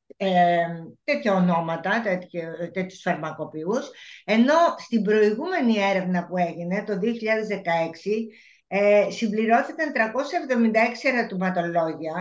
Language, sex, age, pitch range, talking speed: Greek, female, 50-69, 190-260 Hz, 90 wpm